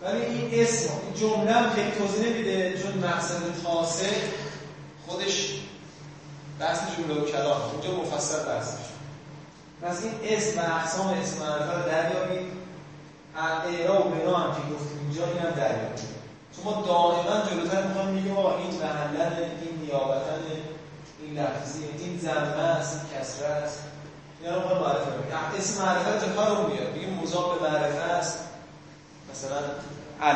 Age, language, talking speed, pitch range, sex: 20-39, Persian, 130 wpm, 150-180 Hz, male